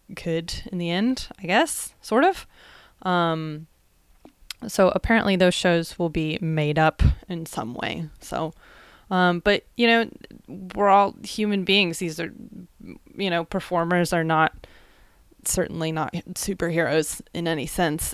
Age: 20-39